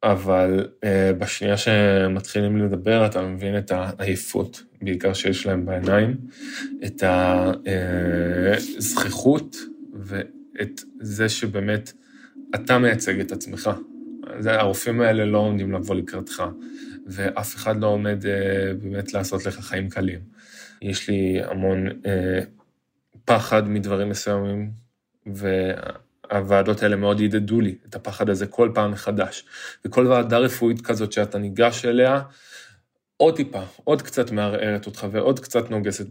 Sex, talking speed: male, 120 wpm